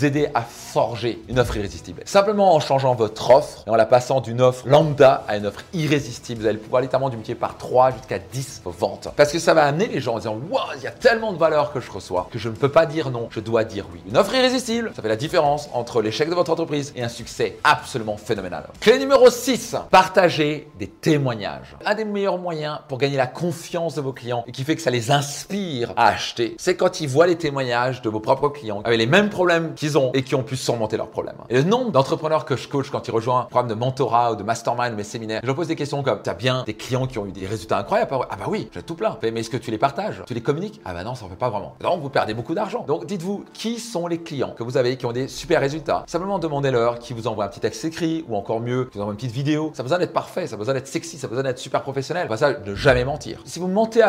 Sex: male